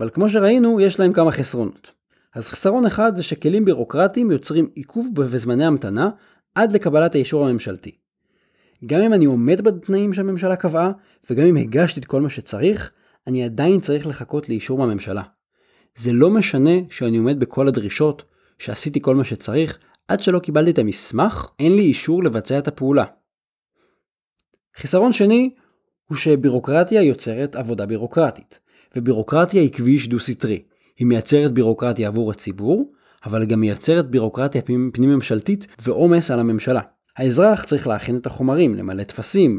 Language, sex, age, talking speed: Hebrew, male, 30-49, 145 wpm